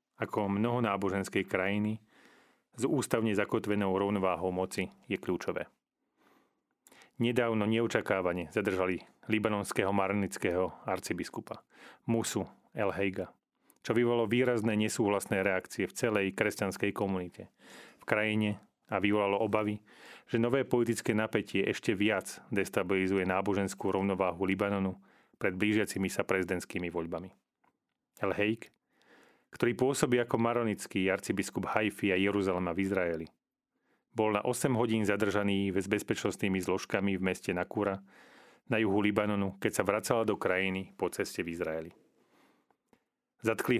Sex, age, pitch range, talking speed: male, 30-49, 95-110 Hz, 115 wpm